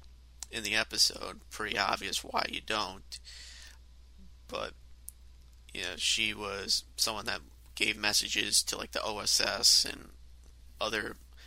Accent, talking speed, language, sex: American, 120 wpm, English, male